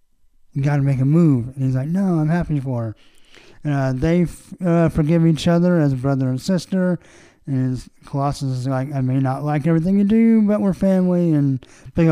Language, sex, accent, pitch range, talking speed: English, male, American, 135-180 Hz, 195 wpm